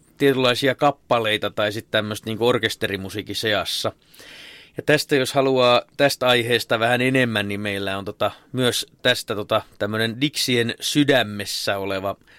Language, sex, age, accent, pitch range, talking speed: Finnish, male, 30-49, native, 110-135 Hz, 130 wpm